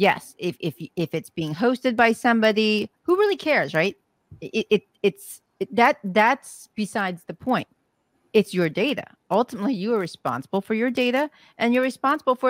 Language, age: English, 40-59